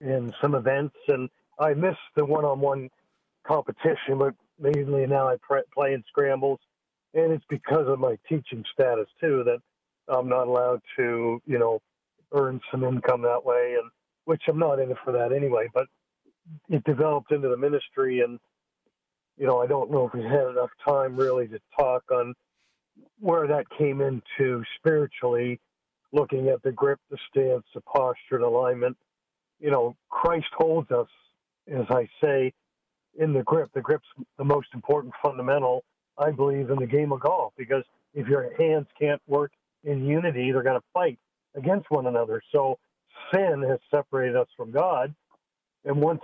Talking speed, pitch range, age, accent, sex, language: 165 wpm, 130-155 Hz, 50-69, American, male, English